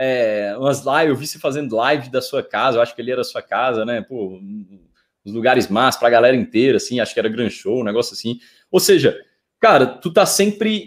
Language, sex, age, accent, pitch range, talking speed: Portuguese, male, 20-39, Brazilian, 135-195 Hz, 235 wpm